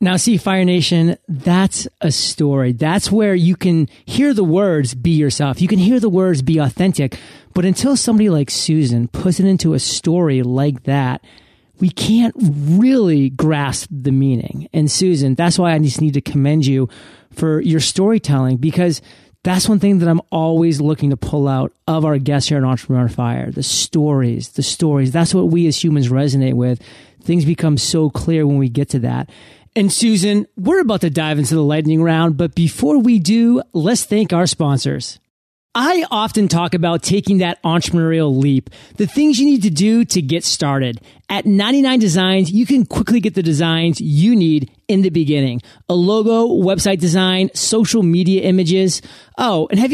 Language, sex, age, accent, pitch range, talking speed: English, male, 30-49, American, 145-200 Hz, 180 wpm